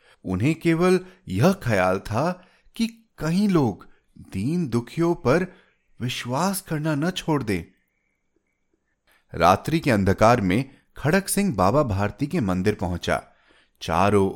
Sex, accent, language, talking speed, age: male, native, Hindi, 115 wpm, 30-49